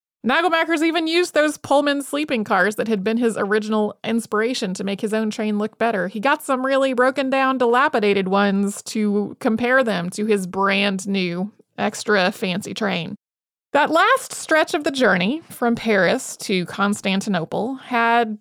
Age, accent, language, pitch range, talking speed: 30-49, American, English, 210-275 Hz, 150 wpm